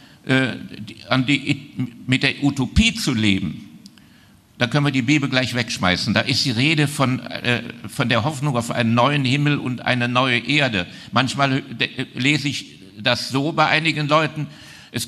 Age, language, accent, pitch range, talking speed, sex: 60-79, German, German, 115-140 Hz, 145 wpm, male